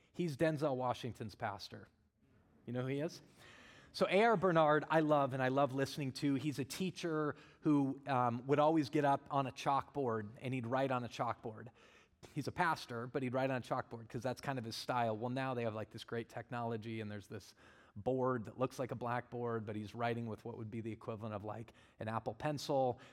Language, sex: English, male